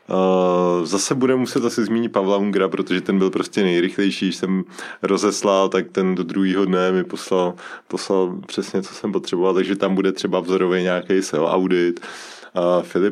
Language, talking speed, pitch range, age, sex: Czech, 175 wpm, 90-100 Hz, 20-39, male